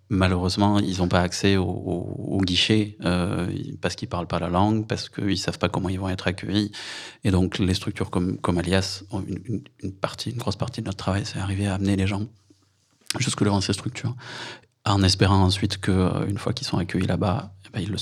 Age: 30-49